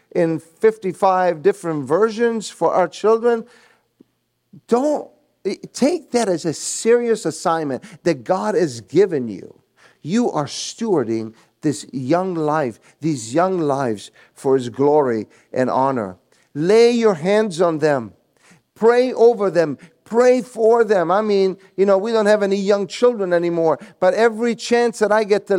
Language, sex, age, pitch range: English, male, 50-69, 175-235 Hz